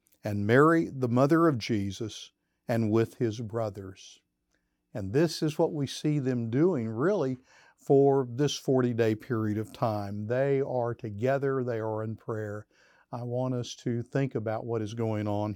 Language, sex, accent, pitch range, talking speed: English, male, American, 110-135 Hz, 160 wpm